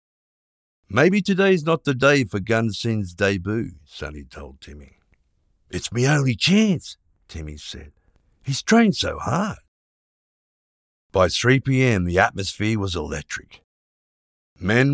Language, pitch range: English, 80-115 Hz